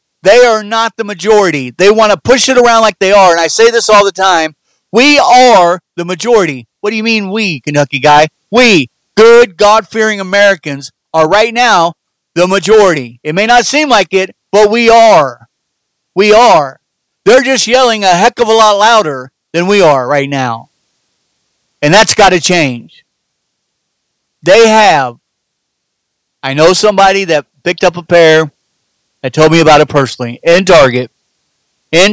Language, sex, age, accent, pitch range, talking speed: English, male, 40-59, American, 150-210 Hz, 170 wpm